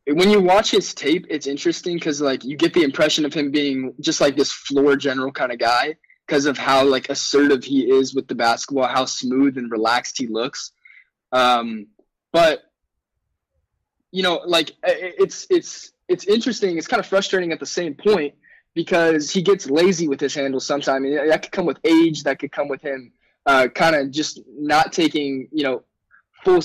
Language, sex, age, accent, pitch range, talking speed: English, male, 20-39, American, 135-175 Hz, 195 wpm